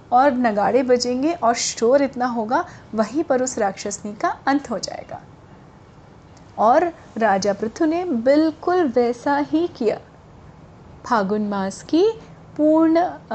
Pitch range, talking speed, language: 215-280 Hz, 120 wpm, Hindi